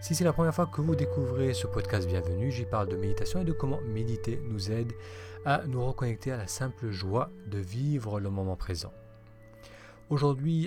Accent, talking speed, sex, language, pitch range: French, 190 wpm, male, French, 100-140 Hz